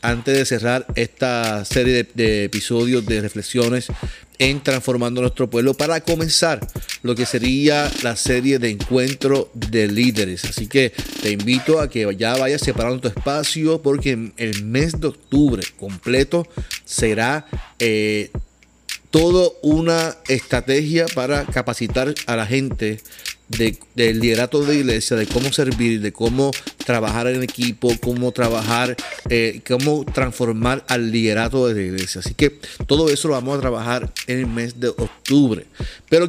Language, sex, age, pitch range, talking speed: Spanish, male, 30-49, 115-140 Hz, 145 wpm